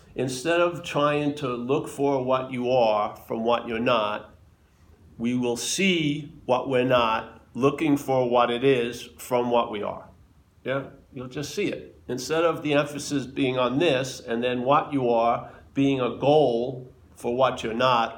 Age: 50-69